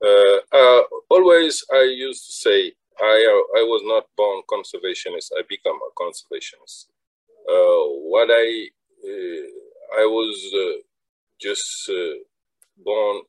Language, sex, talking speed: English, male, 125 wpm